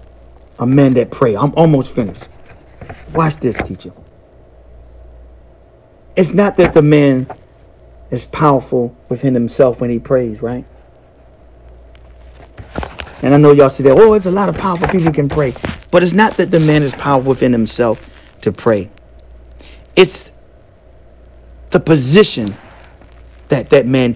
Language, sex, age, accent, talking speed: English, male, 40-59, American, 140 wpm